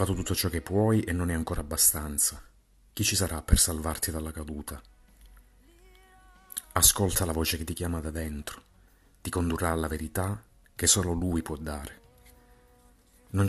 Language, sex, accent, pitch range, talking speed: Italian, male, native, 80-95 Hz, 155 wpm